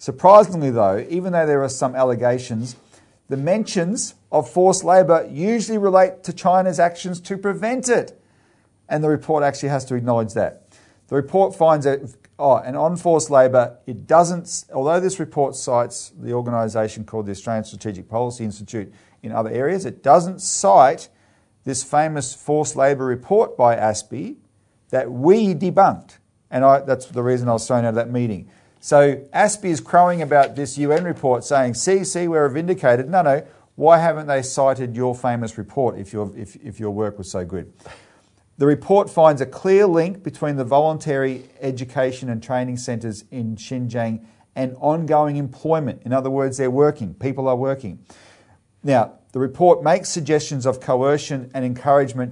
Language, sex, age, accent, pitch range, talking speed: English, male, 40-59, Australian, 120-160 Hz, 165 wpm